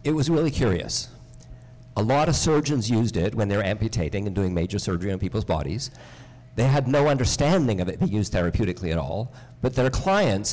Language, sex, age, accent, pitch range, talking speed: English, male, 50-69, American, 110-140 Hz, 200 wpm